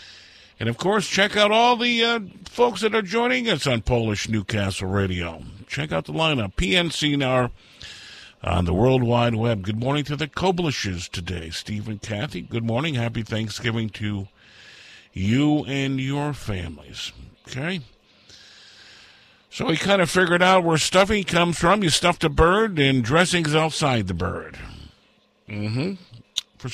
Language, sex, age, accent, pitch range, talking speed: English, male, 50-69, American, 105-155 Hz, 155 wpm